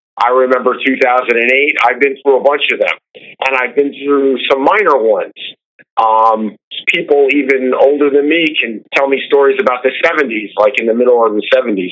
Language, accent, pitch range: English, American, 125-200 Hz